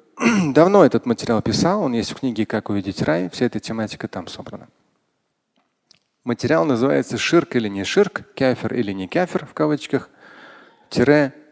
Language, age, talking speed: Russian, 40-59, 150 wpm